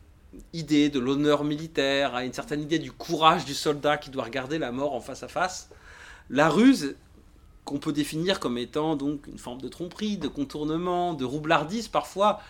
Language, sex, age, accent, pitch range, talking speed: French, male, 30-49, French, 130-190 Hz, 180 wpm